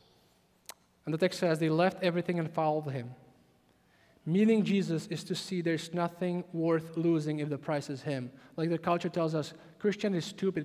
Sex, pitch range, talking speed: male, 150-190 Hz, 180 wpm